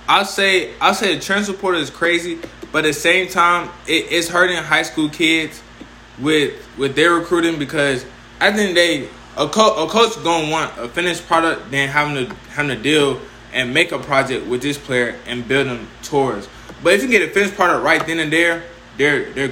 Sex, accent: male, American